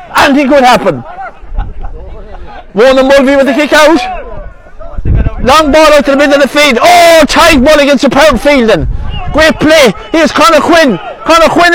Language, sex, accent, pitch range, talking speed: English, male, British, 235-315 Hz, 170 wpm